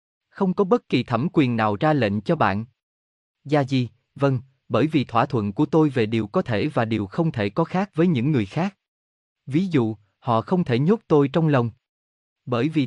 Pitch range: 105-155 Hz